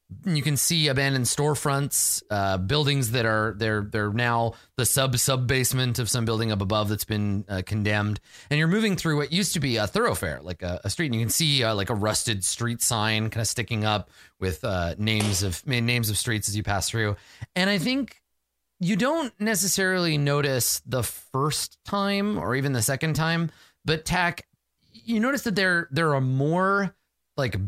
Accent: American